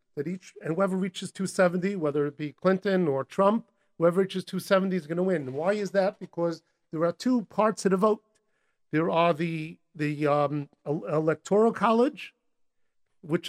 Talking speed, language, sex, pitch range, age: 170 wpm, English, male, 165-200 Hz, 50-69